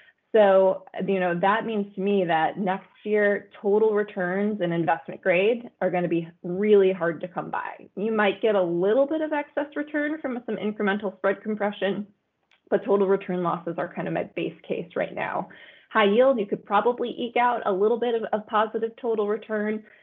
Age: 20-39